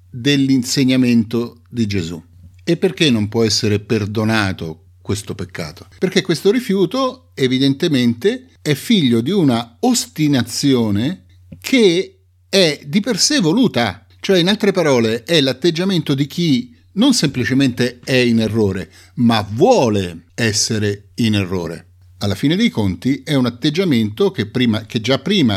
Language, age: Italian, 50-69